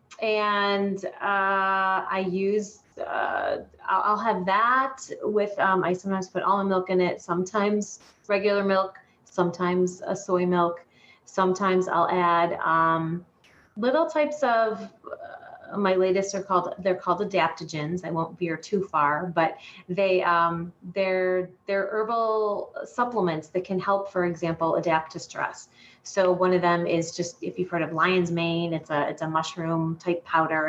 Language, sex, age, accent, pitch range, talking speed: English, female, 30-49, American, 165-195 Hz, 155 wpm